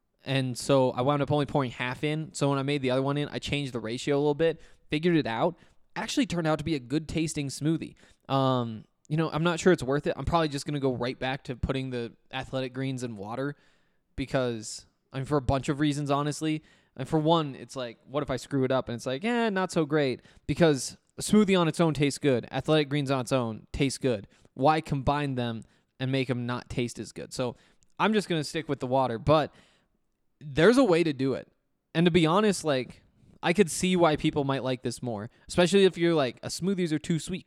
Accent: American